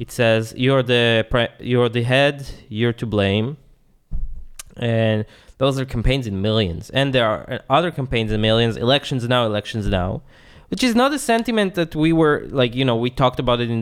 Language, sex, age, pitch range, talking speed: English, male, 20-39, 115-150 Hz, 185 wpm